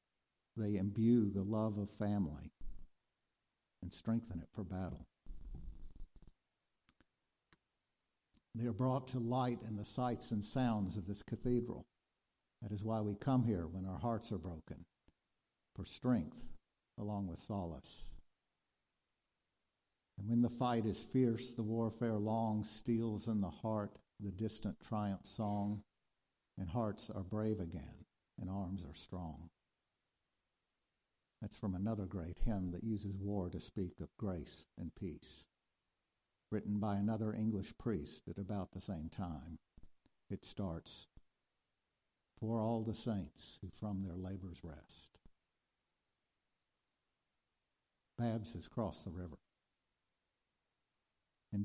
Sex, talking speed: male, 125 wpm